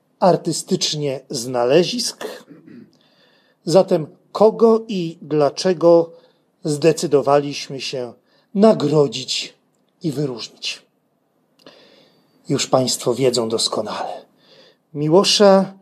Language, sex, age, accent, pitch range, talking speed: Polish, male, 40-59, native, 155-210 Hz, 60 wpm